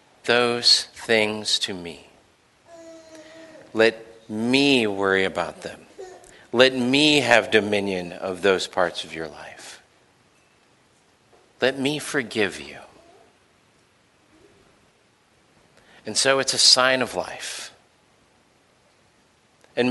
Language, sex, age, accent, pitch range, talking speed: English, male, 50-69, American, 100-150 Hz, 95 wpm